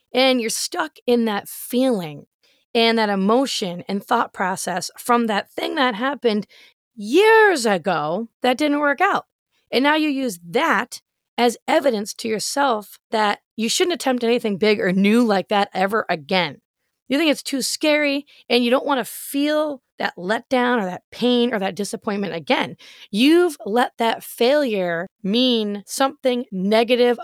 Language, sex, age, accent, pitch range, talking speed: English, female, 30-49, American, 205-275 Hz, 155 wpm